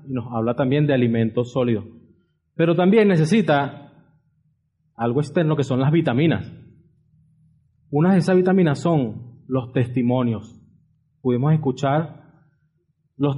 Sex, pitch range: male, 130-155 Hz